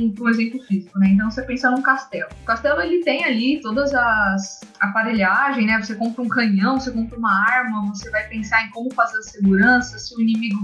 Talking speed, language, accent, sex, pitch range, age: 210 wpm, Portuguese, Brazilian, female, 200-245 Hz, 20-39